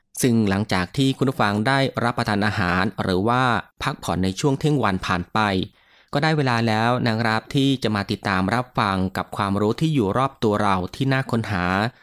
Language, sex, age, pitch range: Thai, male, 20-39, 95-130 Hz